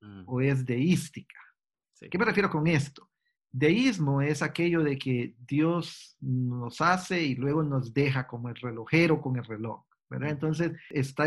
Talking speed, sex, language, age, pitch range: 155 wpm, male, Spanish, 50-69, 145-180 Hz